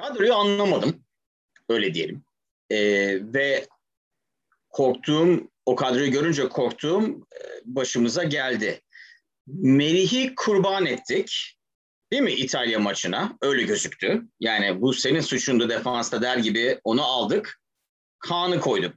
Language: Turkish